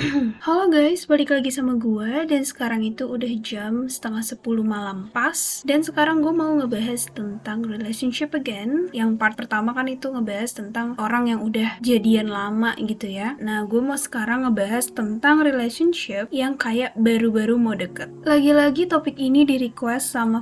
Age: 20-39